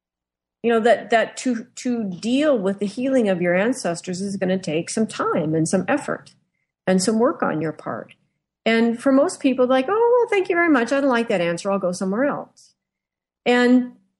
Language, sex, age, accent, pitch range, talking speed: English, female, 40-59, American, 175-235 Hz, 205 wpm